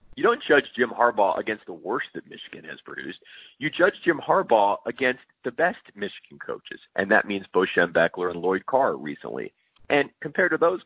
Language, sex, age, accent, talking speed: English, male, 30-49, American, 190 wpm